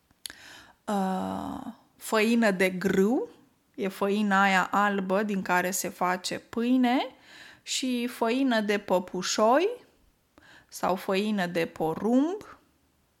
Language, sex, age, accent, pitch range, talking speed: Romanian, female, 20-39, native, 185-235 Hz, 90 wpm